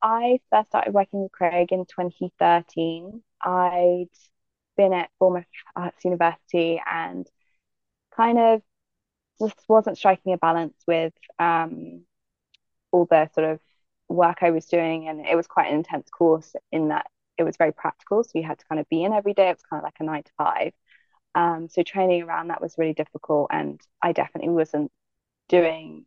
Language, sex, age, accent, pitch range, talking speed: English, female, 20-39, British, 160-185 Hz, 175 wpm